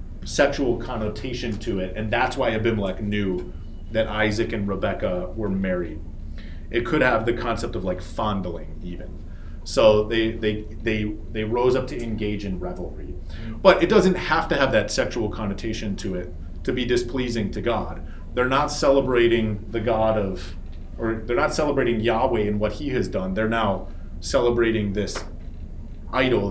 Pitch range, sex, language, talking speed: 80-110 Hz, male, English, 165 wpm